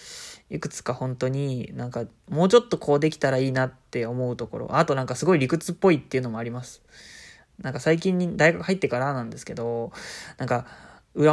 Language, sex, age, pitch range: Japanese, male, 20-39, 125-170 Hz